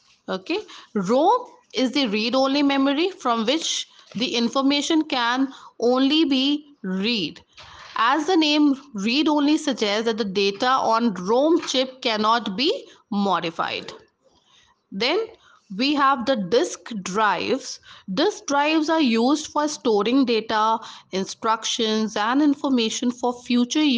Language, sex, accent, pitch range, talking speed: English, female, Indian, 220-295 Hz, 120 wpm